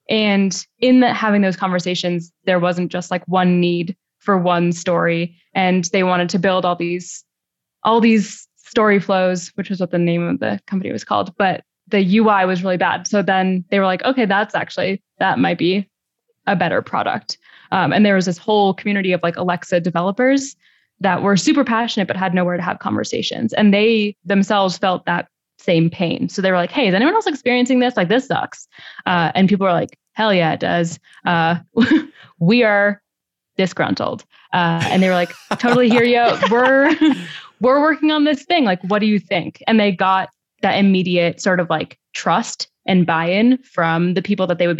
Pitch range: 175-215 Hz